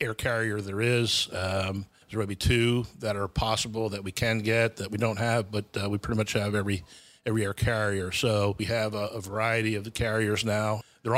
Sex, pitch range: male, 105-115 Hz